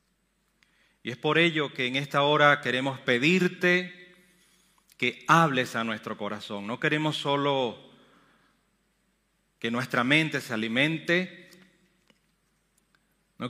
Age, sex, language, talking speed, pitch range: 40-59, male, Romanian, 105 wpm, 120-180 Hz